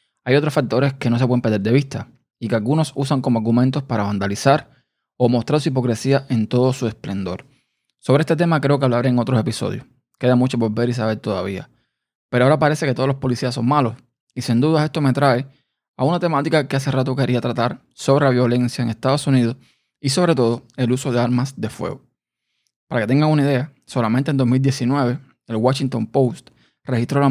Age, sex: 20-39, male